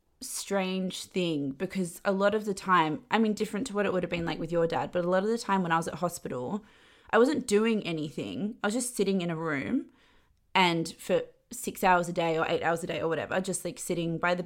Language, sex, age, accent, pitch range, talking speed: English, female, 20-39, Australian, 160-200 Hz, 255 wpm